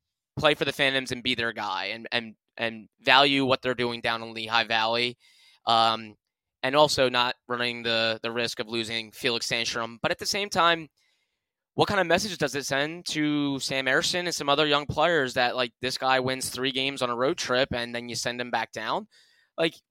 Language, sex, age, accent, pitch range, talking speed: English, male, 10-29, American, 115-140 Hz, 210 wpm